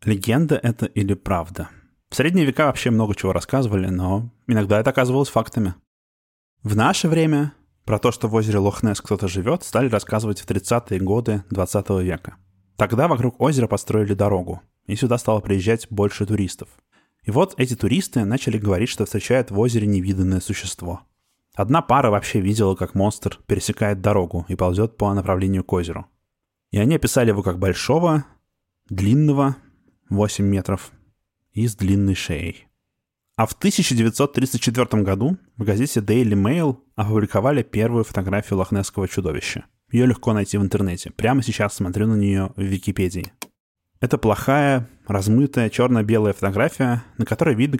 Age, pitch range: 20-39, 95-120 Hz